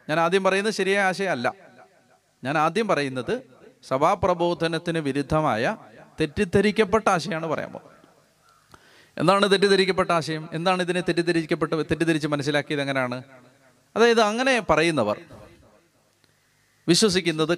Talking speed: 90 wpm